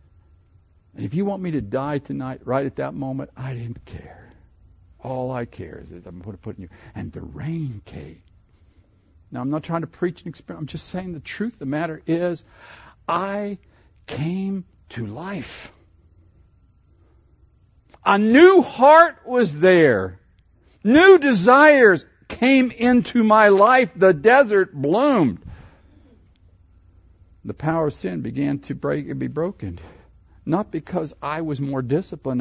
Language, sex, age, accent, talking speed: English, male, 60-79, American, 150 wpm